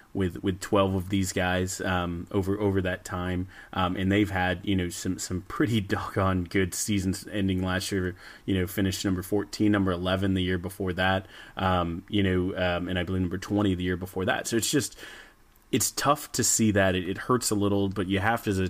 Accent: American